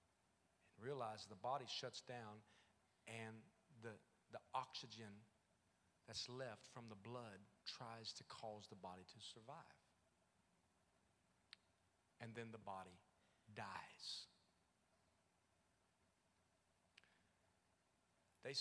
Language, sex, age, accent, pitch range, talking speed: English, male, 40-59, American, 95-155 Hz, 85 wpm